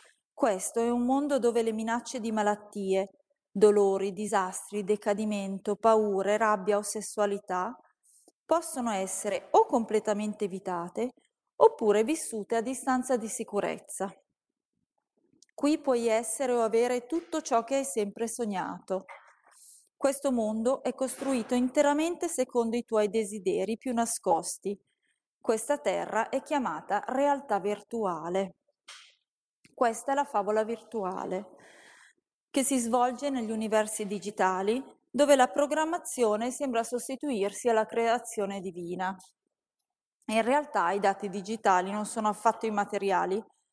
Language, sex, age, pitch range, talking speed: Italian, female, 30-49, 205-255 Hz, 115 wpm